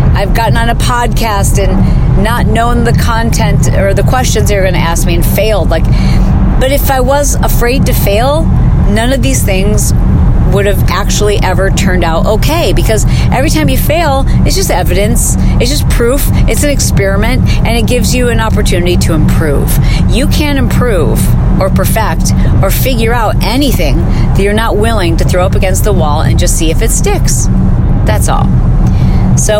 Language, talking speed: English, 180 wpm